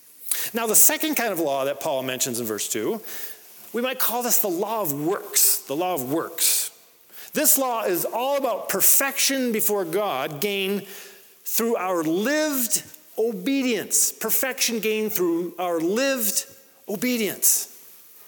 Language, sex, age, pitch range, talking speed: English, male, 40-59, 165-275 Hz, 140 wpm